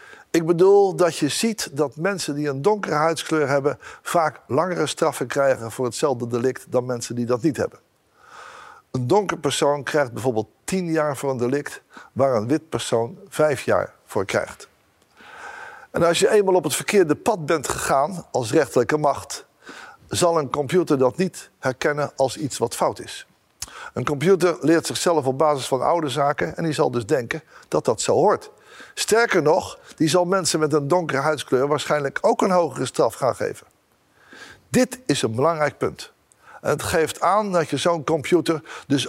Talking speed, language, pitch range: 175 wpm, Dutch, 140-175 Hz